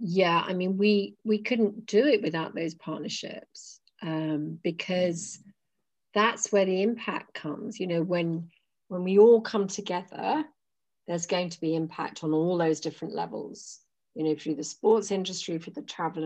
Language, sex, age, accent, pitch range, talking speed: English, female, 40-59, British, 165-205 Hz, 165 wpm